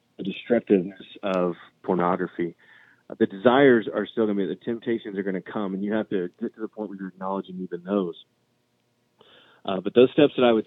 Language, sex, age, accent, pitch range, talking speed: English, male, 30-49, American, 95-110 Hz, 215 wpm